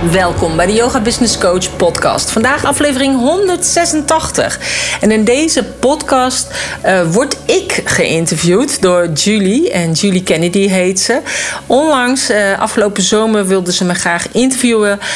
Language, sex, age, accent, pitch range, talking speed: Dutch, female, 40-59, Dutch, 170-220 Hz, 135 wpm